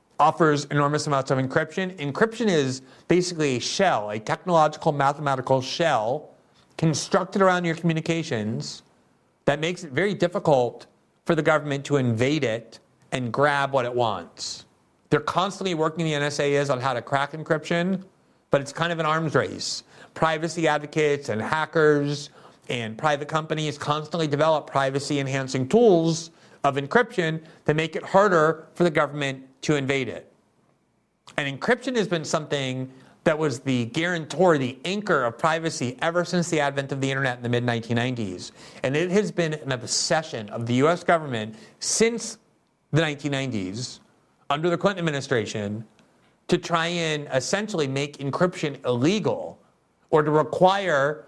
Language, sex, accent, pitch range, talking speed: English, male, American, 140-170 Hz, 145 wpm